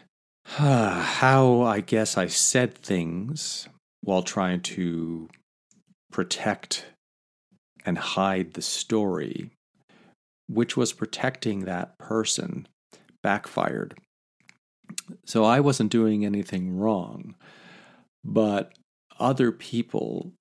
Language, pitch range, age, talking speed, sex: English, 95-120 Hz, 50-69, 90 wpm, male